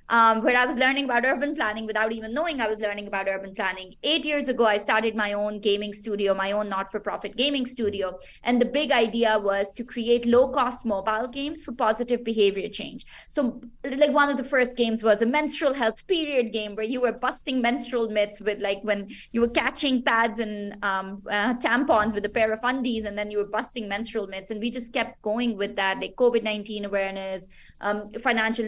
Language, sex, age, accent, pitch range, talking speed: English, female, 20-39, Indian, 205-250 Hz, 205 wpm